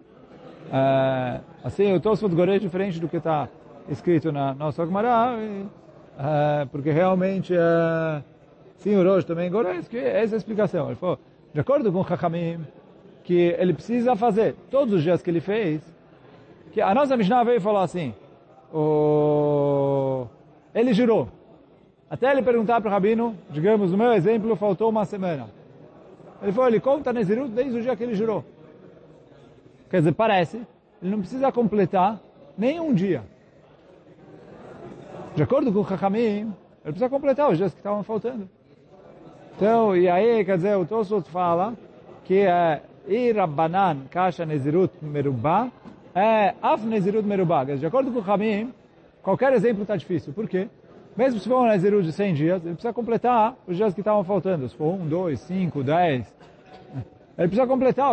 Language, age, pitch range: Portuguese, 40-59, 165-225 Hz